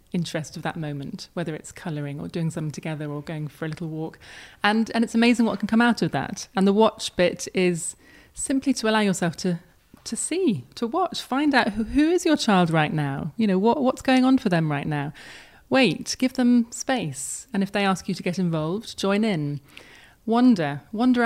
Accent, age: British, 30-49